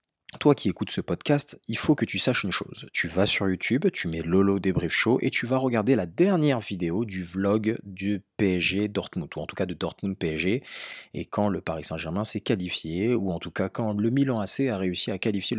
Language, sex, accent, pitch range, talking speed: French, male, French, 90-120 Hz, 225 wpm